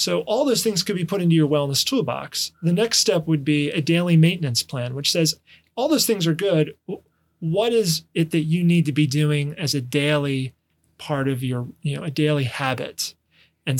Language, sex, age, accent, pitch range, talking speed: English, male, 30-49, American, 140-170 Hz, 210 wpm